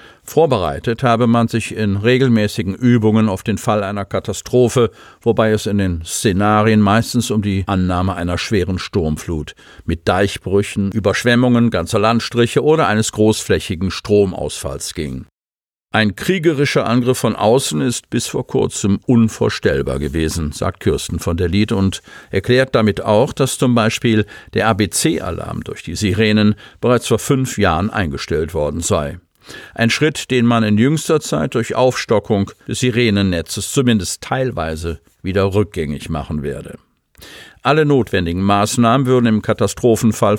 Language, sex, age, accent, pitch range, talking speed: German, male, 50-69, German, 95-115 Hz, 135 wpm